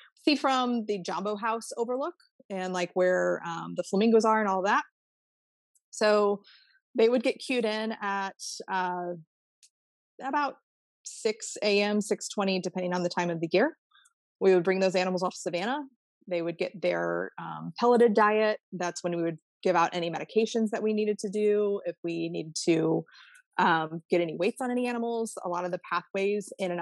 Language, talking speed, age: English, 180 wpm, 20-39